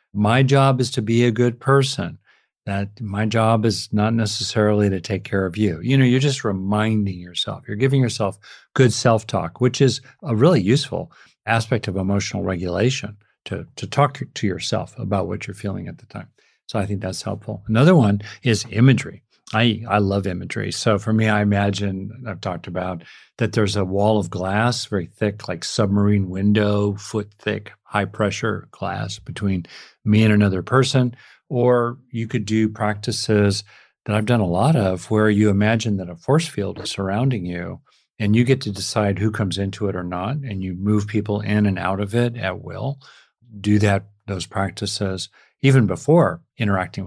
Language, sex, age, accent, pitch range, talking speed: English, male, 50-69, American, 100-115 Hz, 180 wpm